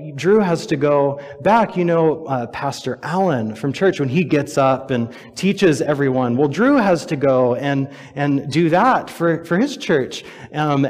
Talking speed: 180 wpm